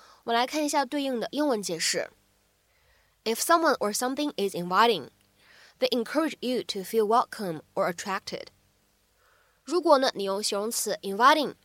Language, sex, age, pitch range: Chinese, female, 20-39, 210-285 Hz